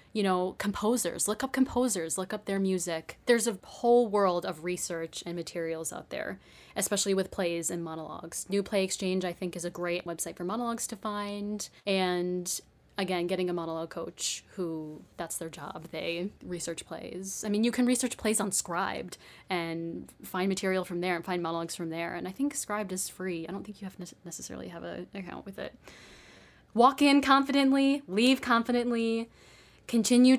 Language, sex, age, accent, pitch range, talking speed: English, female, 20-39, American, 180-245 Hz, 185 wpm